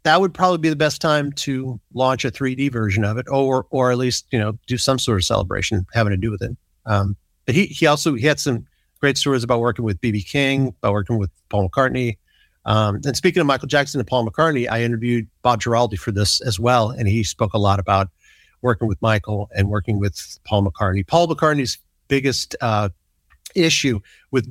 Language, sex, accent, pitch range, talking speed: English, male, American, 110-150 Hz, 215 wpm